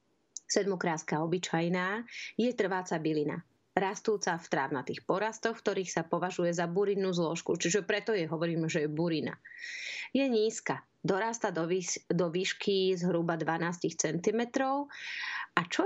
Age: 30-49